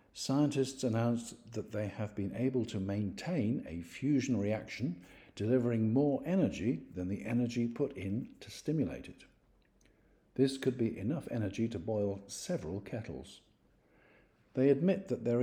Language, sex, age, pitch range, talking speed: English, male, 50-69, 95-130 Hz, 140 wpm